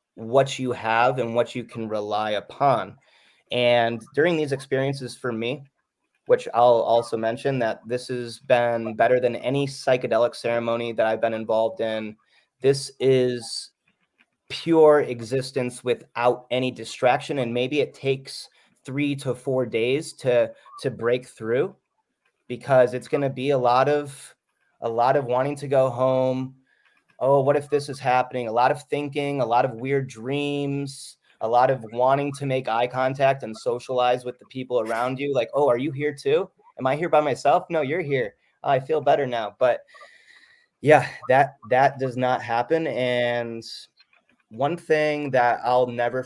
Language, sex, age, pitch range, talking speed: English, male, 30-49, 120-140 Hz, 165 wpm